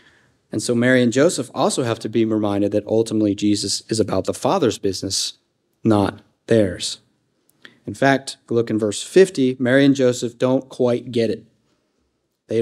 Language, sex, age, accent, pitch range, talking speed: English, male, 40-59, American, 115-140 Hz, 160 wpm